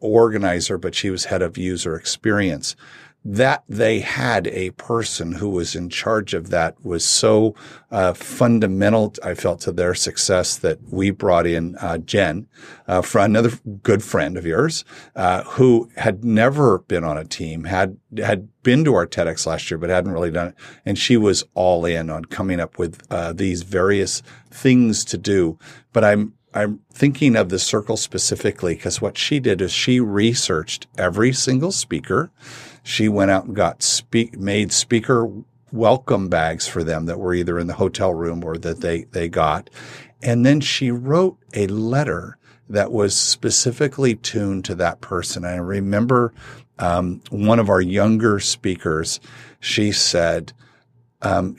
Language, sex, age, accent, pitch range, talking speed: English, male, 50-69, American, 90-120 Hz, 165 wpm